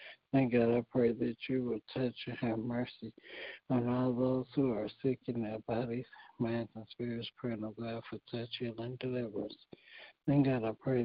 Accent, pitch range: American, 115-130 Hz